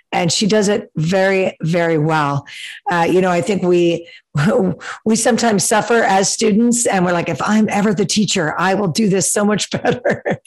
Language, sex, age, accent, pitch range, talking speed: English, female, 50-69, American, 180-220 Hz, 190 wpm